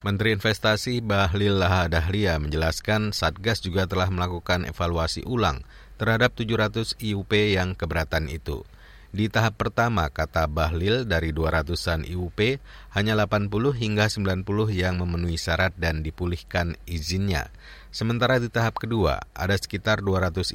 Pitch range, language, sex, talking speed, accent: 85-110 Hz, Indonesian, male, 125 wpm, native